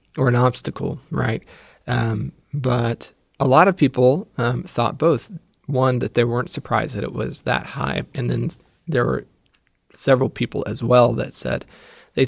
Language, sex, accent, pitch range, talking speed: English, male, American, 120-150 Hz, 165 wpm